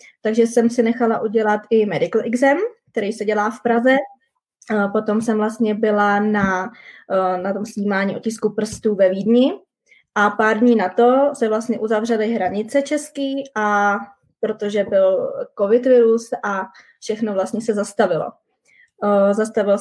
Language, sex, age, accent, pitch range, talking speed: Czech, female, 20-39, native, 205-250 Hz, 135 wpm